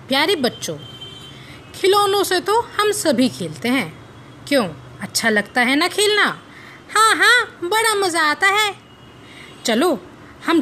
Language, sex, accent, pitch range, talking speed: Hindi, female, native, 215-360 Hz, 130 wpm